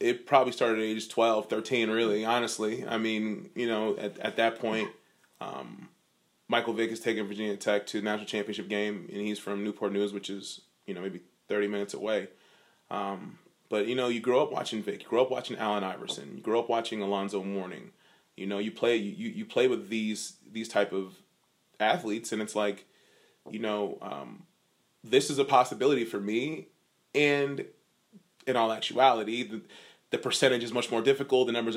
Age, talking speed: 20-39, 190 wpm